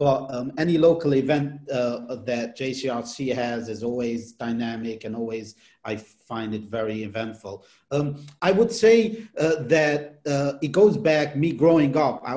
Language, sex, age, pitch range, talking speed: English, male, 40-59, 130-165 Hz, 160 wpm